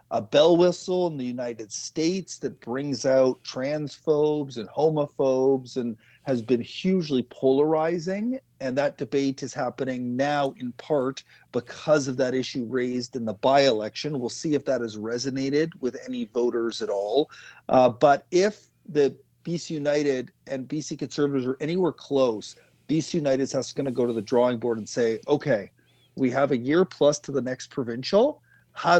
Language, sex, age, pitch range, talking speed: English, male, 40-59, 130-155 Hz, 165 wpm